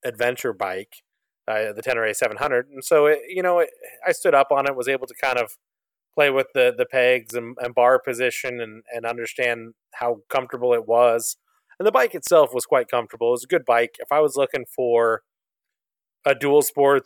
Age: 30-49